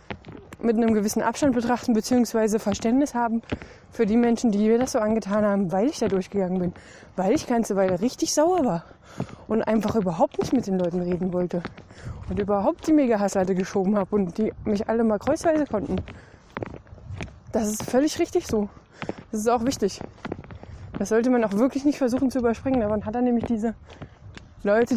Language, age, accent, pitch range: German, 20-39, German, 205-250 Hz